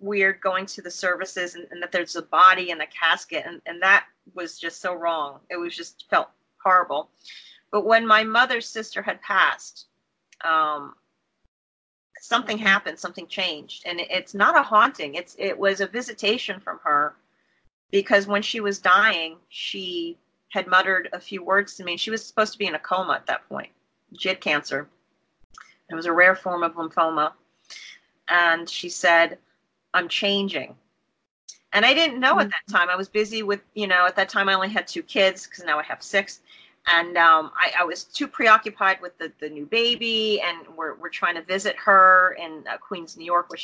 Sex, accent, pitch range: female, American, 175-210 Hz